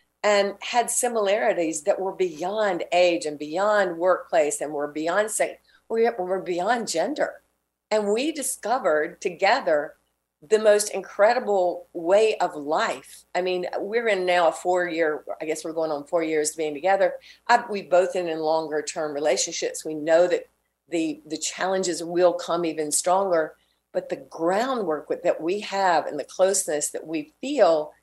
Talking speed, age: 155 wpm, 50-69